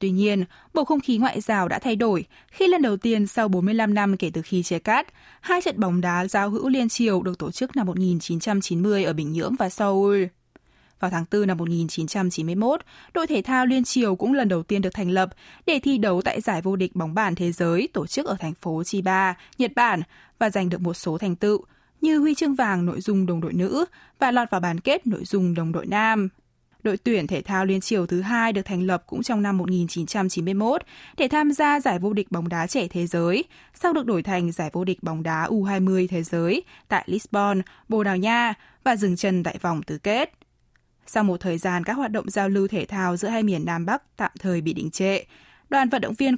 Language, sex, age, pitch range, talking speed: Vietnamese, female, 20-39, 180-230 Hz, 230 wpm